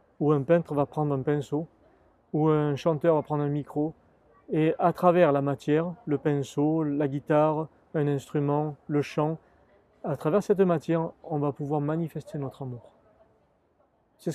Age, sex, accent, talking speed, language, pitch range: 40-59, male, French, 160 wpm, French, 140-160 Hz